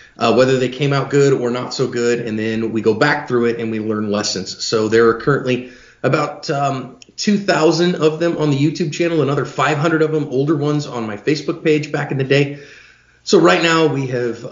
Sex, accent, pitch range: male, American, 115-145 Hz